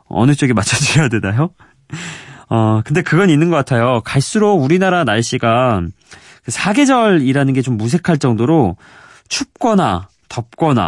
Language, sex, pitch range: Korean, male, 110-170 Hz